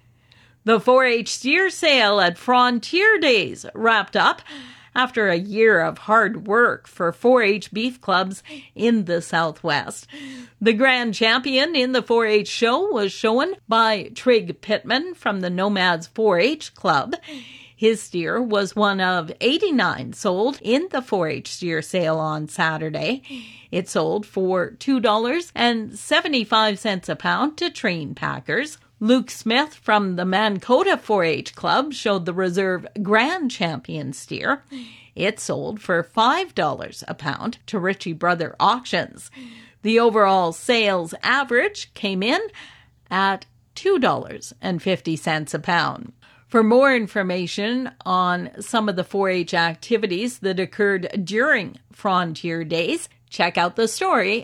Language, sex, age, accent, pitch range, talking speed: English, female, 50-69, American, 180-245 Hz, 125 wpm